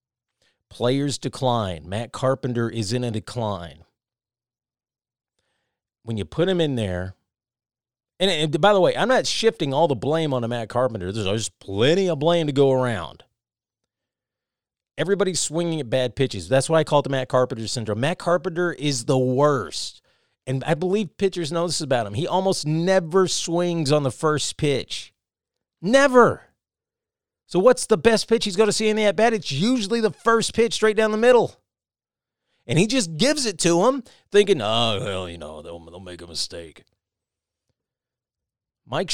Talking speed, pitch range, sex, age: 170 wpm, 120-185 Hz, male, 40-59